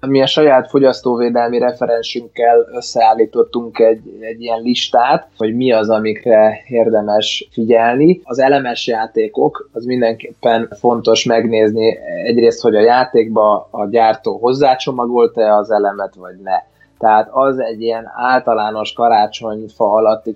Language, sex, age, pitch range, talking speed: Hungarian, male, 20-39, 115-130 Hz, 120 wpm